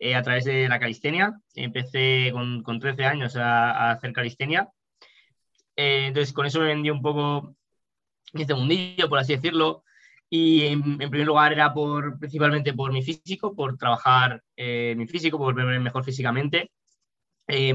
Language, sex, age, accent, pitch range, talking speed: Spanish, male, 20-39, Spanish, 125-145 Hz, 160 wpm